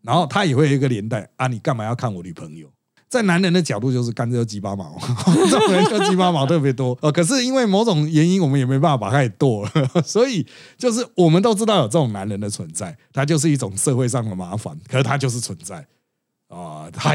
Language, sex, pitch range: Chinese, male, 125-180 Hz